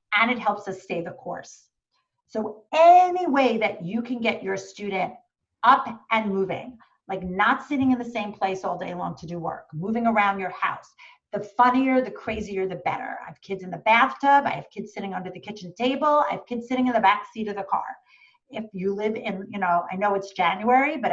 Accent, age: American, 40-59